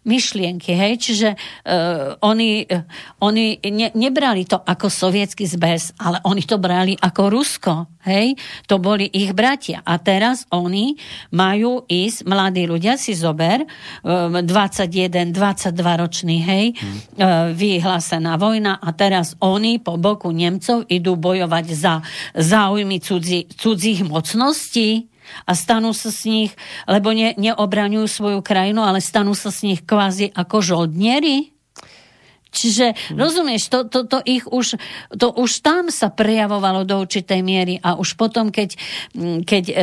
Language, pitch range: Slovak, 180-220 Hz